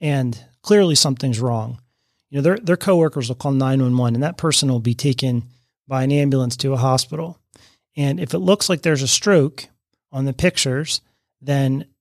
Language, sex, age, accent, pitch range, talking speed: English, male, 30-49, American, 130-160 Hz, 180 wpm